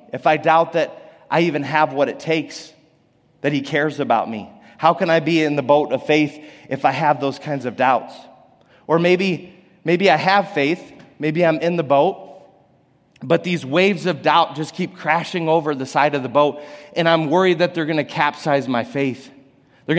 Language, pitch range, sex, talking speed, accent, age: English, 130-160 Hz, male, 200 wpm, American, 30-49